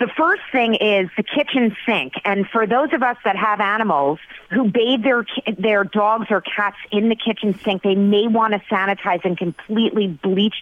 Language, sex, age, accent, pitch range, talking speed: English, female, 40-59, American, 180-225 Hz, 190 wpm